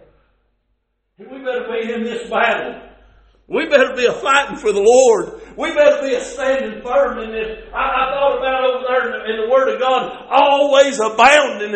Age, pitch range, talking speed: 50-69, 265-330 Hz, 190 wpm